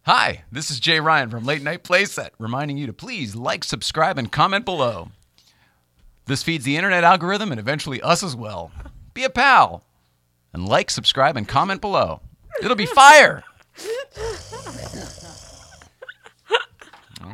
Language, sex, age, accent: English, male, 40-59, American